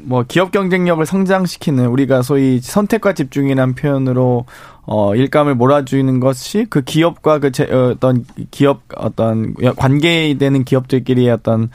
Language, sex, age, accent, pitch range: Korean, male, 20-39, native, 130-170 Hz